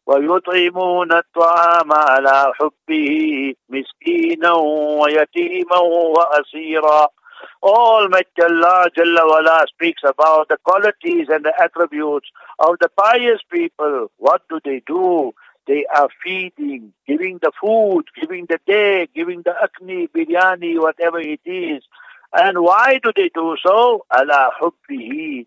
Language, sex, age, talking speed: English, male, 60-79, 115 wpm